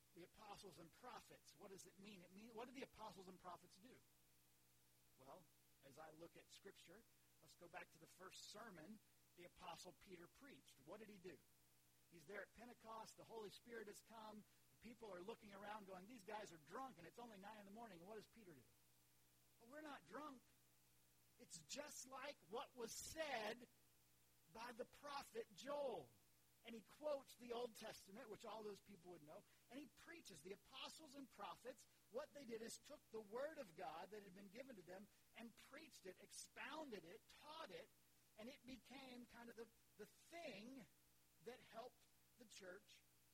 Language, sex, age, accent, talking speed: English, male, 50-69, American, 185 wpm